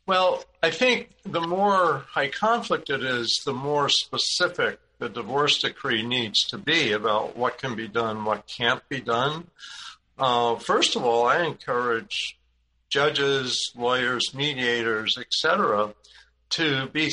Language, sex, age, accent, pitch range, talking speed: English, male, 60-79, American, 115-155 Hz, 140 wpm